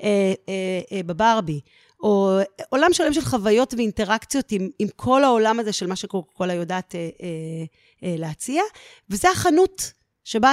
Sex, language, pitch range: female, English, 185-245 Hz